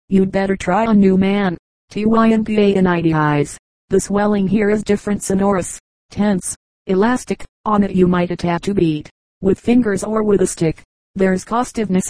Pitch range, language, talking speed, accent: 185-210 Hz, English, 150 wpm, American